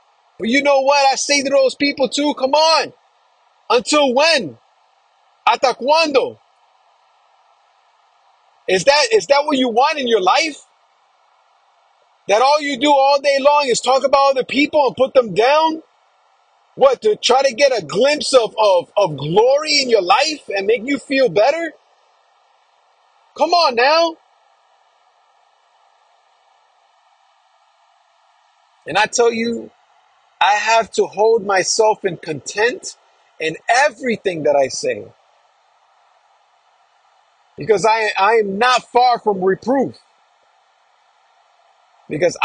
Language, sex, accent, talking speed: English, male, American, 125 wpm